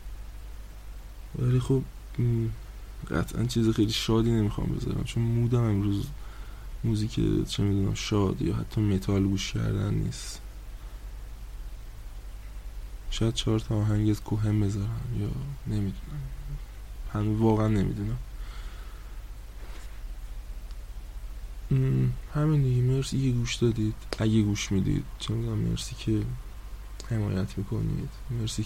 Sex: male